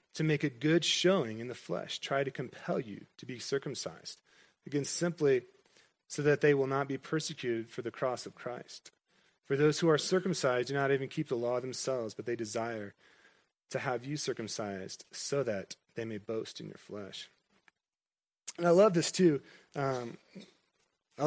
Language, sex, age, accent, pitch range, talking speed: English, male, 30-49, American, 125-175 Hz, 180 wpm